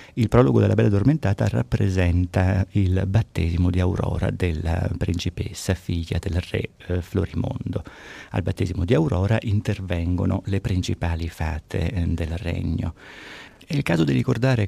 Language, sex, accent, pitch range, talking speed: Italian, male, native, 90-110 Hz, 135 wpm